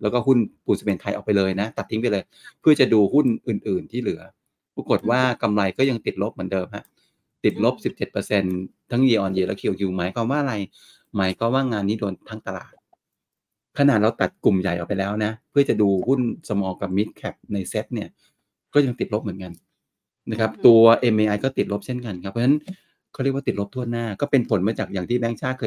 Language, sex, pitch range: Thai, male, 100-125 Hz